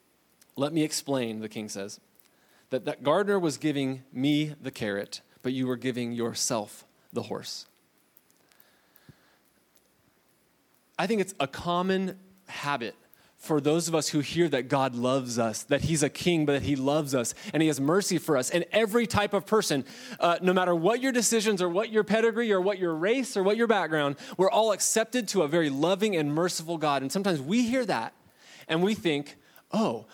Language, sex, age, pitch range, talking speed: English, male, 20-39, 145-205 Hz, 185 wpm